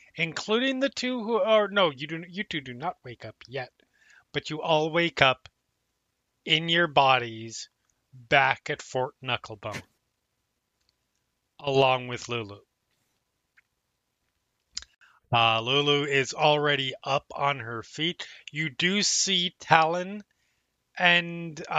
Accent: American